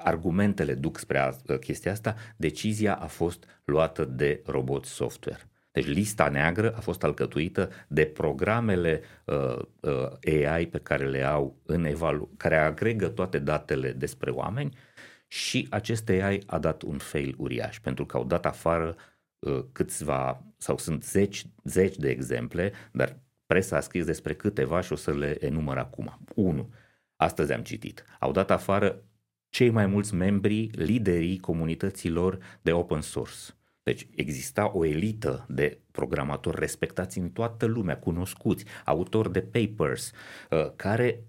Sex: male